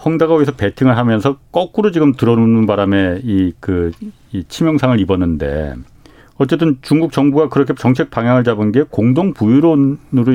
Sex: male